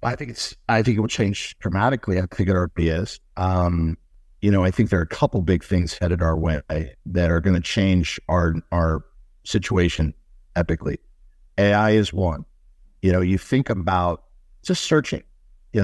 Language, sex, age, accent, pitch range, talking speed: English, male, 50-69, American, 80-105 Hz, 180 wpm